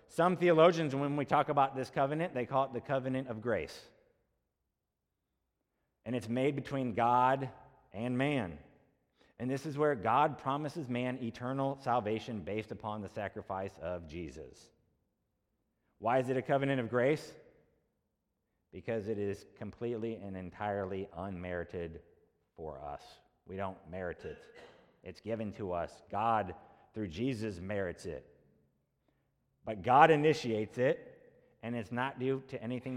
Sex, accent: male, American